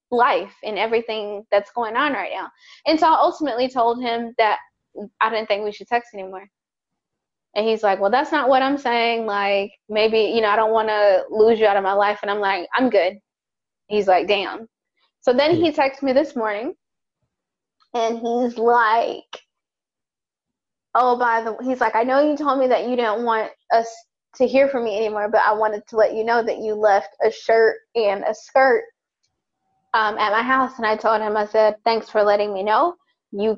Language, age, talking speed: English, 20-39, 205 wpm